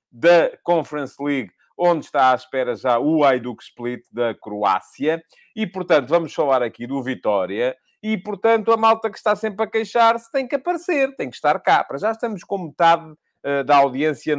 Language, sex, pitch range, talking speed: English, male, 135-185 Hz, 185 wpm